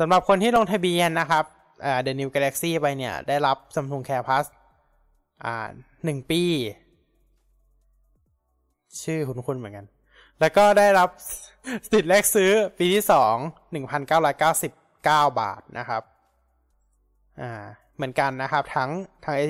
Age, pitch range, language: 20-39, 110-165 Hz, Thai